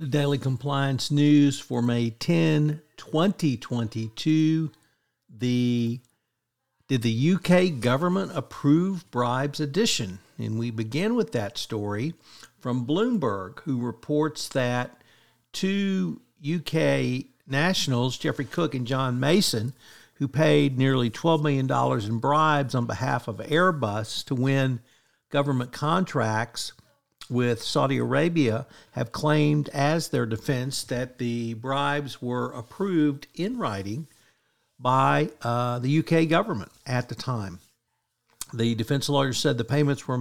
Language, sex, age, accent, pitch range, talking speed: English, male, 50-69, American, 120-150 Hz, 120 wpm